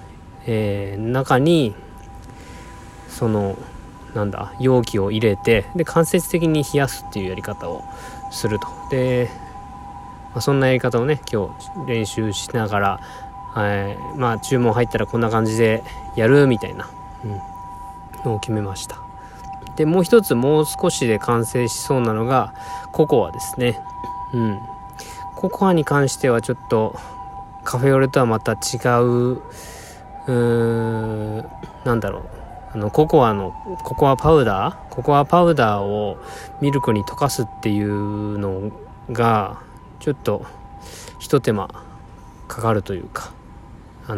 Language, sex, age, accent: Japanese, male, 20-39, native